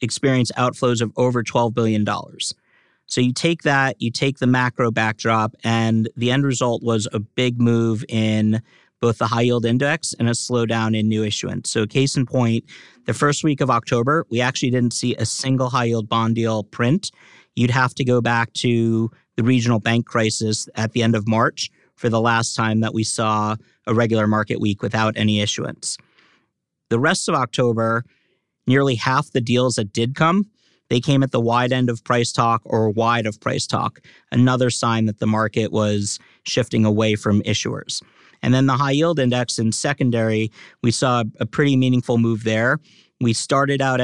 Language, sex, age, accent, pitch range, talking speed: English, male, 50-69, American, 110-130 Hz, 185 wpm